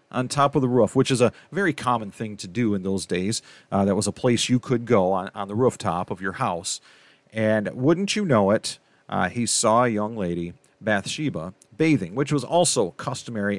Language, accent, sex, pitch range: English, American, male, 105-140 Hz